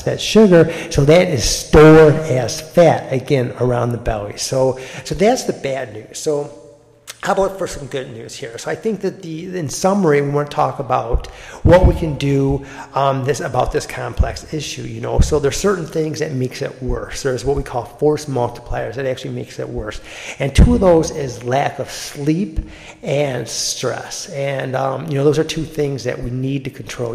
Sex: male